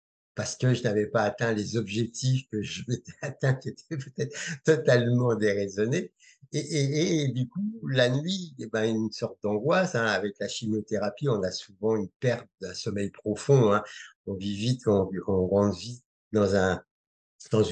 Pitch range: 105-140 Hz